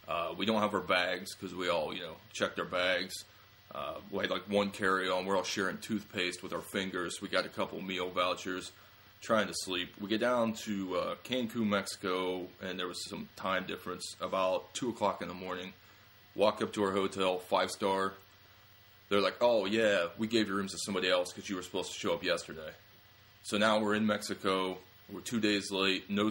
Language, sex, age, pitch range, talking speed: English, male, 20-39, 95-105 Hz, 205 wpm